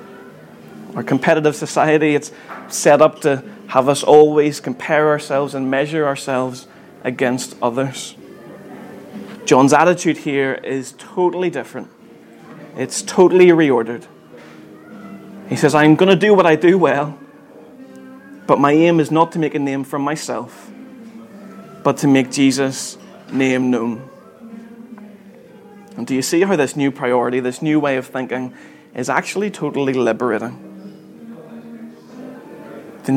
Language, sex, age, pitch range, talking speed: English, male, 20-39, 130-170 Hz, 130 wpm